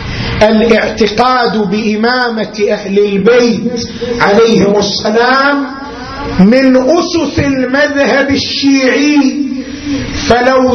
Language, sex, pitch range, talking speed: Arabic, male, 230-280 Hz, 60 wpm